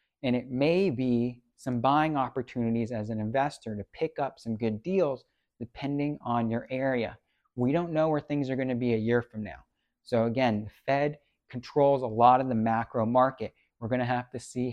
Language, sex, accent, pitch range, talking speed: English, male, American, 115-135 Hz, 205 wpm